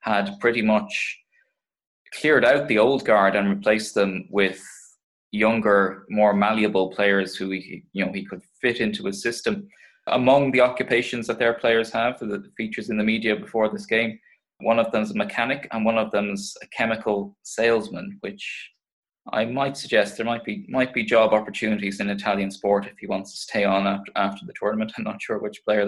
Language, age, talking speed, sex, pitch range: English, 20-39, 185 wpm, male, 100-110 Hz